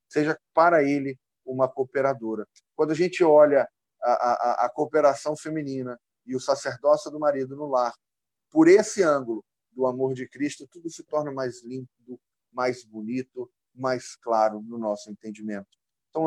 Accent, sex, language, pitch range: Brazilian, male, Portuguese, 115-145 Hz